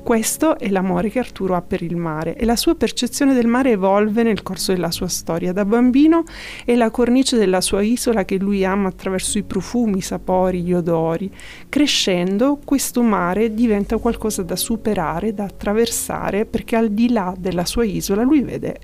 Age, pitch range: 30-49, 185-230 Hz